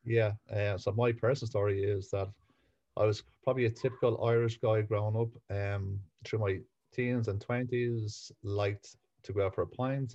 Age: 30-49